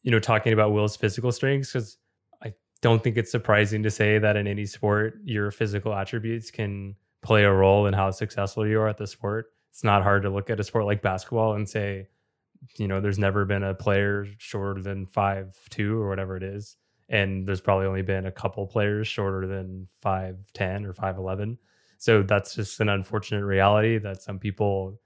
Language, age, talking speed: English, 20-39, 195 wpm